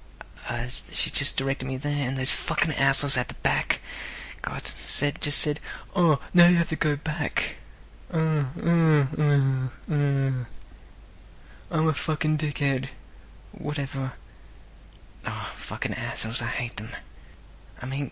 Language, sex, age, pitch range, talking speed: English, male, 20-39, 115-155 Hz, 135 wpm